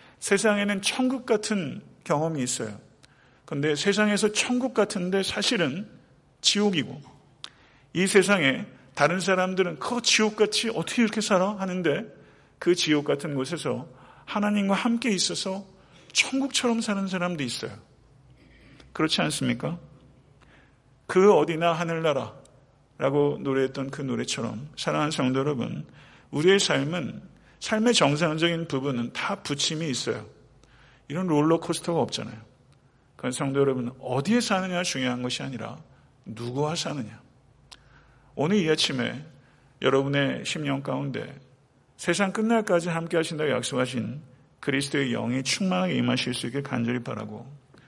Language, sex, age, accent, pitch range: Korean, male, 50-69, native, 130-185 Hz